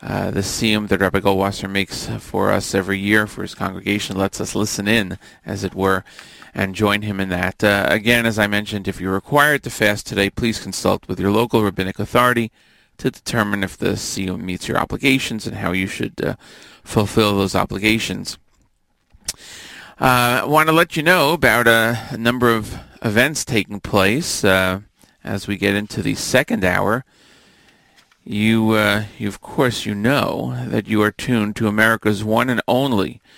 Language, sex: English, male